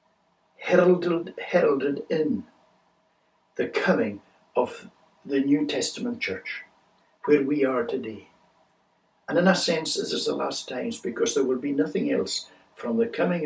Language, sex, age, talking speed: English, male, 60-79, 145 wpm